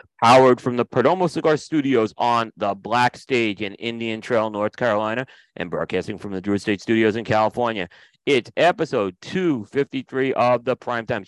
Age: 40-59